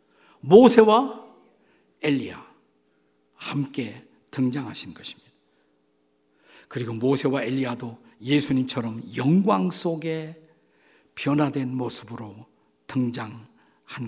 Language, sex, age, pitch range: Korean, male, 50-69, 120-185 Hz